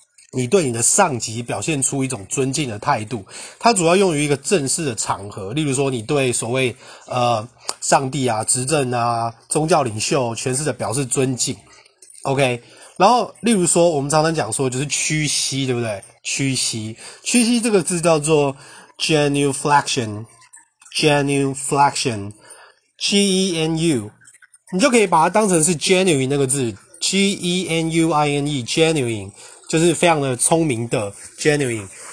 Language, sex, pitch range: Chinese, male, 125-165 Hz